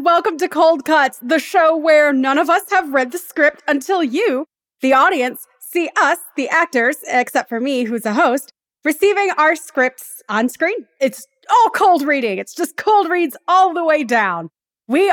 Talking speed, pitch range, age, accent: 185 wpm, 245-330 Hz, 30-49, American